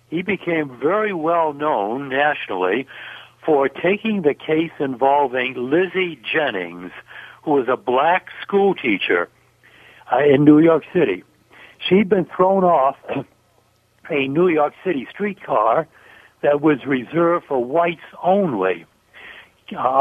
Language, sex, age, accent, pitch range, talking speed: English, male, 60-79, American, 135-180 Hz, 115 wpm